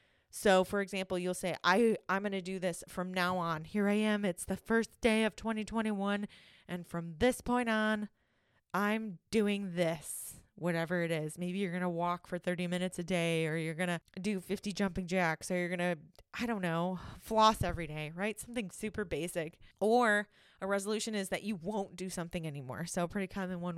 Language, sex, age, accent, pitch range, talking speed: English, female, 20-39, American, 180-220 Hz, 205 wpm